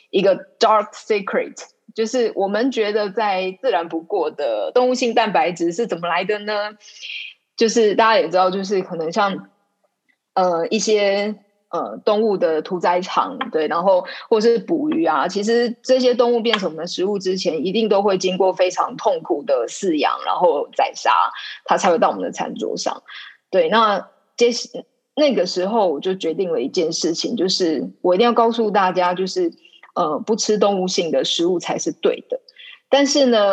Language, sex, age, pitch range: Chinese, female, 20-39, 185-245 Hz